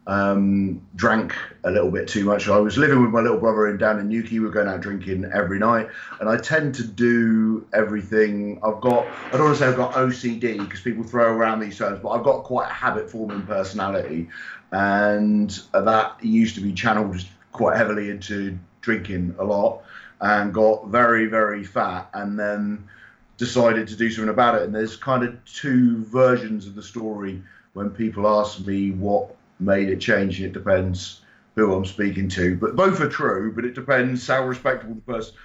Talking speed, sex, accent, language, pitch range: 195 wpm, male, British, English, 95-120 Hz